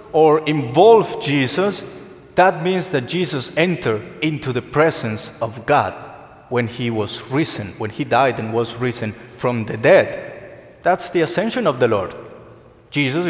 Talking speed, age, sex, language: 150 wpm, 30-49, male, English